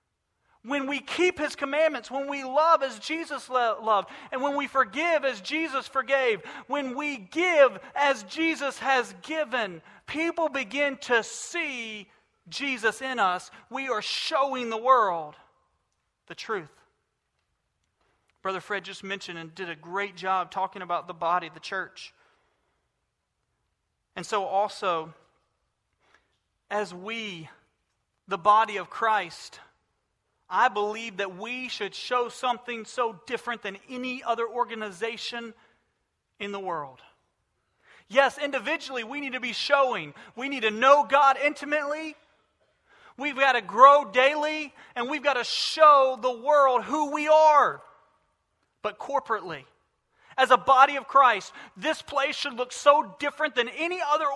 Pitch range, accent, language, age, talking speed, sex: 210-285 Hz, American, English, 40-59, 135 wpm, male